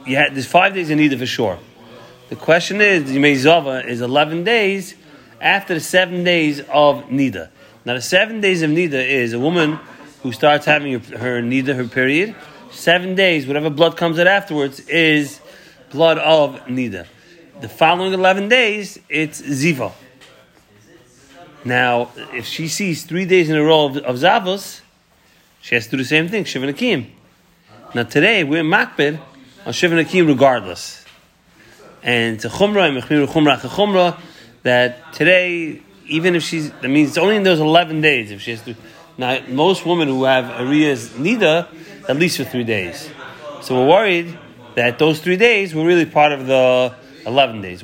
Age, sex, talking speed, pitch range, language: 30-49, male, 170 wpm, 130-170 Hz, English